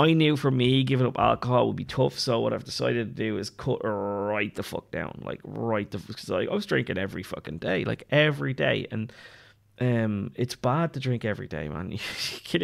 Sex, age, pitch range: male, 20-39, 105-125 Hz